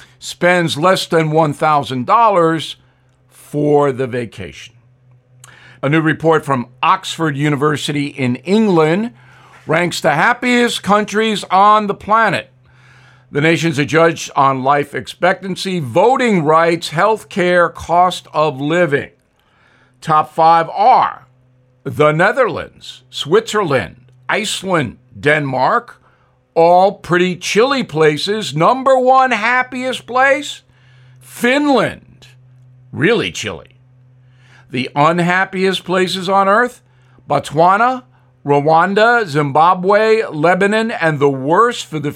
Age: 50-69